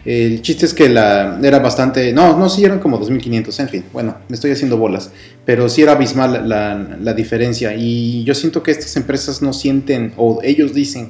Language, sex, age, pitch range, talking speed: Spanish, male, 30-49, 110-130 Hz, 210 wpm